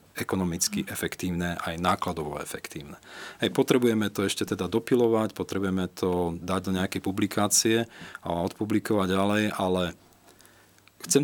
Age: 40-59